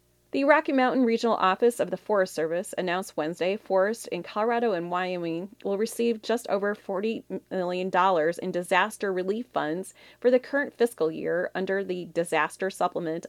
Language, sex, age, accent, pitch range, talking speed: English, female, 30-49, American, 170-230 Hz, 160 wpm